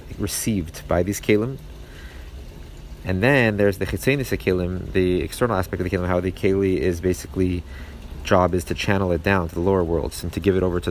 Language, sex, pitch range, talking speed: English, male, 85-105 Hz, 210 wpm